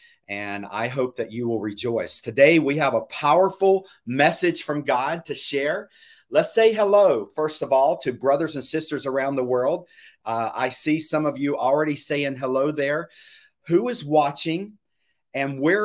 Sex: male